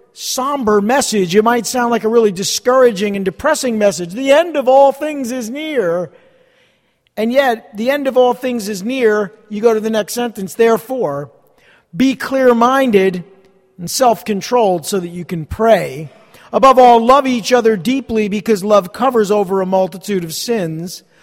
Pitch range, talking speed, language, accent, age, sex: 195-265 Hz, 165 wpm, English, American, 50-69, male